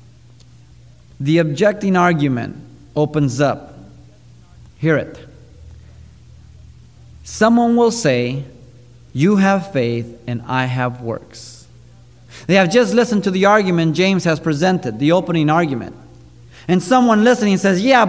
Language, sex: English, male